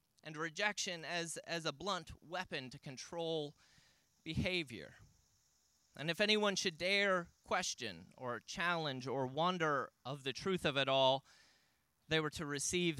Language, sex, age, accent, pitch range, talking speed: English, male, 30-49, American, 170-215 Hz, 140 wpm